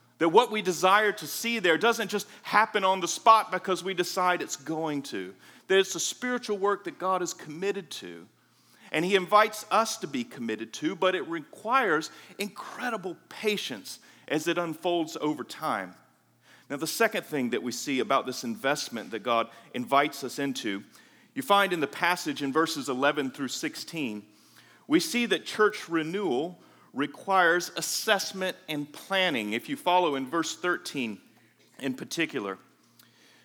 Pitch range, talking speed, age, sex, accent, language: 135-195 Hz, 160 wpm, 40-59, male, American, English